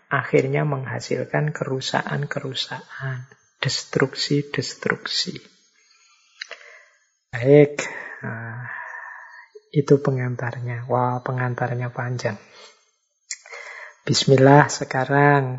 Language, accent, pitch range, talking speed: Indonesian, native, 130-150 Hz, 55 wpm